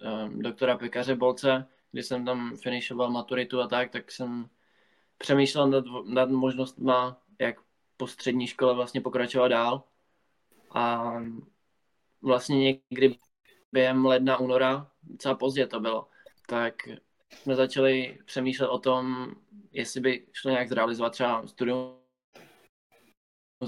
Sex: male